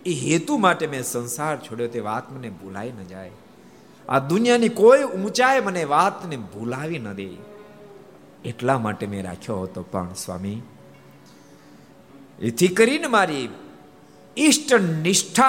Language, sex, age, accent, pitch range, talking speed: Gujarati, male, 50-69, native, 95-155 Hz, 45 wpm